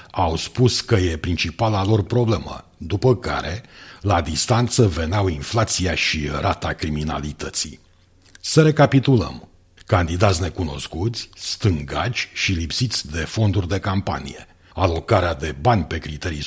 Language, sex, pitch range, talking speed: Romanian, male, 80-105 Hz, 115 wpm